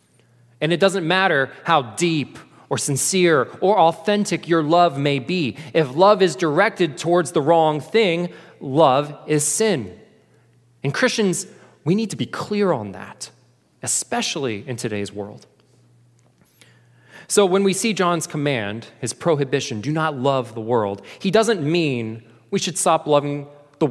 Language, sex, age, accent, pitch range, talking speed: English, male, 20-39, American, 120-170 Hz, 150 wpm